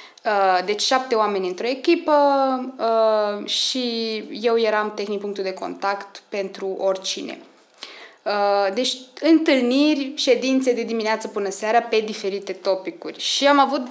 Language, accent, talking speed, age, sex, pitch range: Romanian, native, 130 wpm, 20-39, female, 200-255 Hz